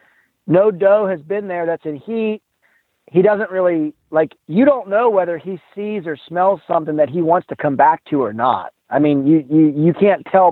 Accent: American